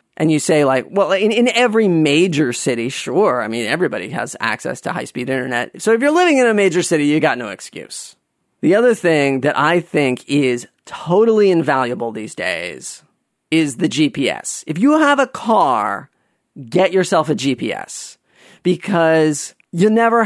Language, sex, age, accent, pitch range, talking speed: English, male, 40-59, American, 150-195 Hz, 170 wpm